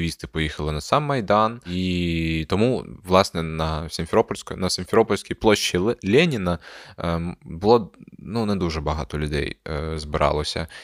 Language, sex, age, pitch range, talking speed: Ukrainian, male, 20-39, 80-95 Hz, 120 wpm